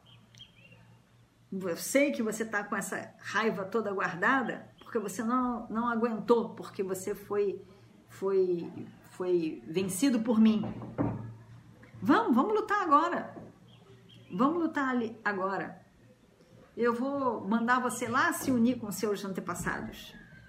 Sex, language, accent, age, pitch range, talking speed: female, Portuguese, Brazilian, 50-69, 180-225 Hz, 125 wpm